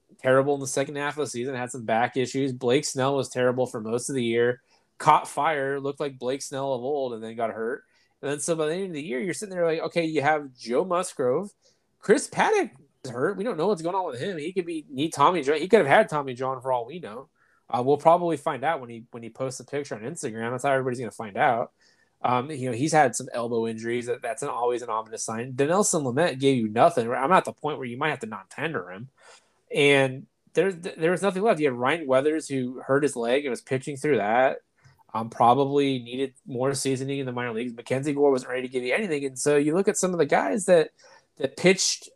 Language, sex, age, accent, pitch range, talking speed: English, male, 20-39, American, 125-165 Hz, 255 wpm